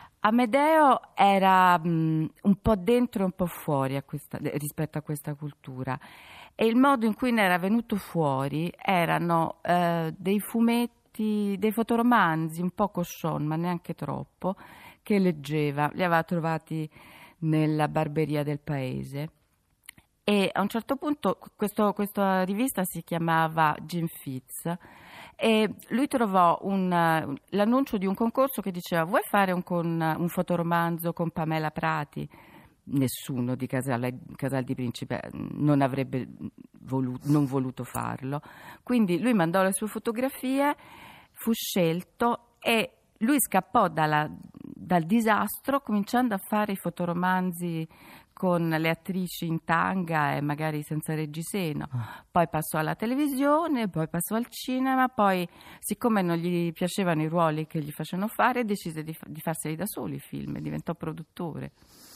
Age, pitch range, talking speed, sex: 40-59, 155-210 Hz, 135 wpm, female